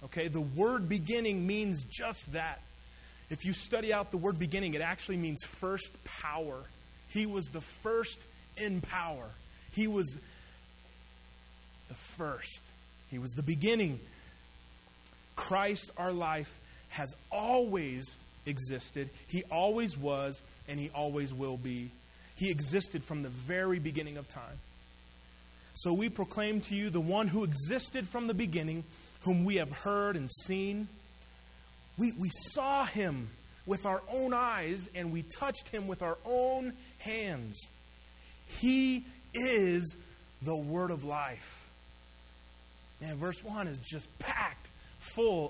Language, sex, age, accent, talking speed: English, male, 30-49, American, 135 wpm